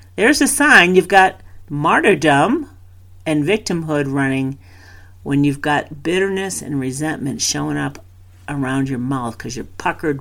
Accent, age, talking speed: American, 50-69, 135 wpm